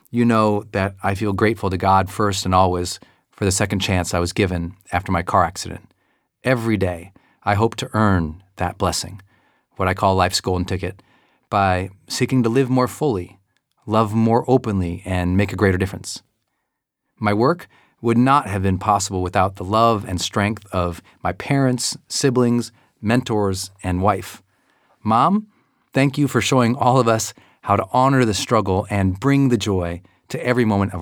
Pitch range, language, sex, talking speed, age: 95-120 Hz, English, male, 175 wpm, 40-59